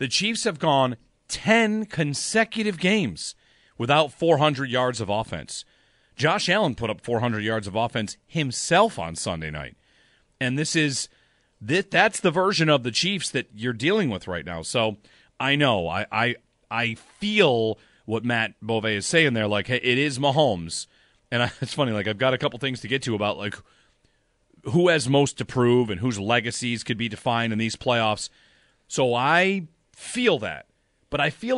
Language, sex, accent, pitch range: English, male, American, 110-160 Hz